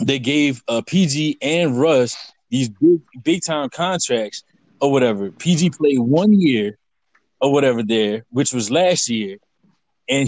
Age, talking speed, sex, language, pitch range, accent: 20-39, 145 wpm, male, English, 125-155 Hz, American